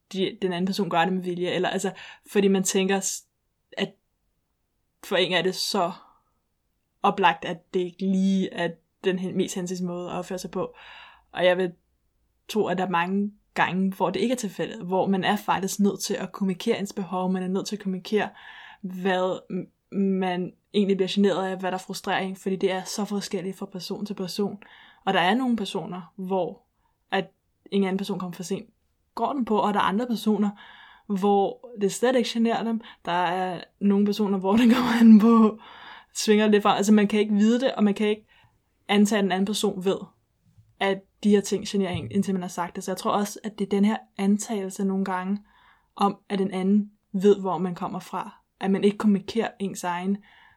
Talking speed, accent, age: 205 wpm, native, 20-39